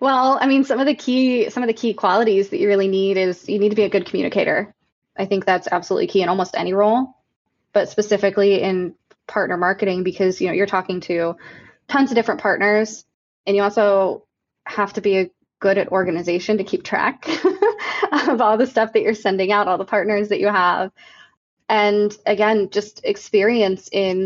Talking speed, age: 200 wpm, 20-39